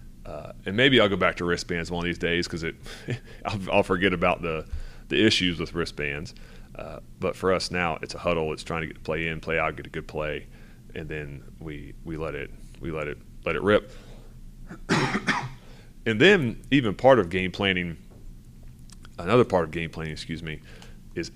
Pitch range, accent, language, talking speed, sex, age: 80-90 Hz, American, English, 195 wpm, male, 30-49